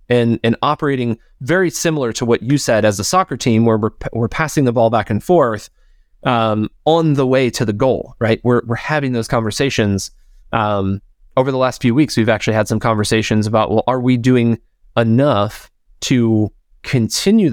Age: 20-39